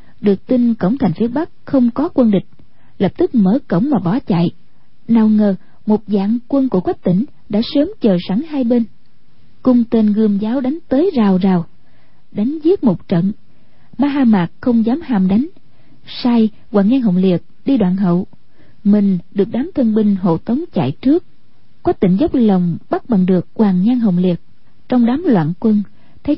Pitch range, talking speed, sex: 195-270 Hz, 190 wpm, female